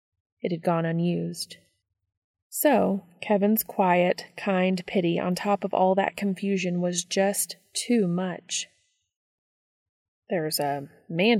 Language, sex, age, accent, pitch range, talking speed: English, female, 30-49, American, 140-185 Hz, 115 wpm